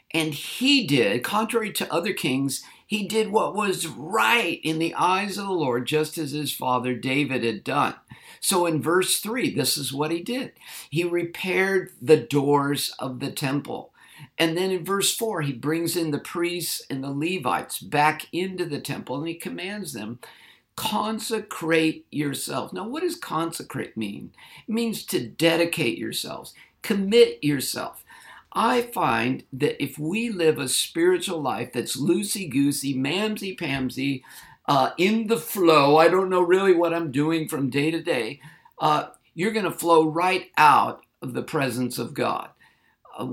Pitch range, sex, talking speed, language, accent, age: 140-190 Hz, male, 160 wpm, English, American, 50-69